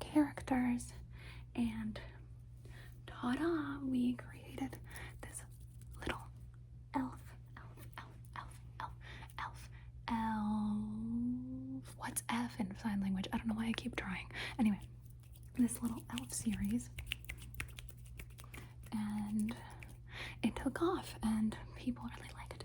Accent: American